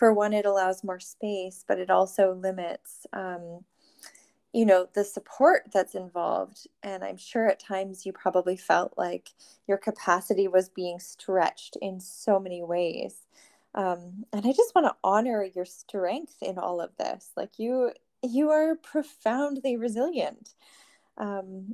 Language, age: English, 20-39